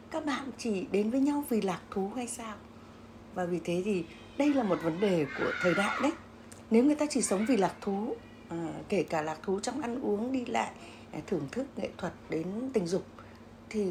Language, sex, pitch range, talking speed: Vietnamese, female, 165-220 Hz, 220 wpm